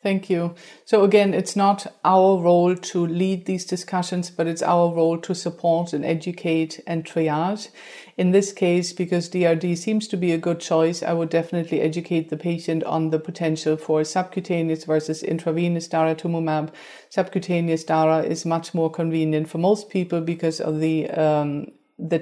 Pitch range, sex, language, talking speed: 160-180 Hz, female, English, 165 wpm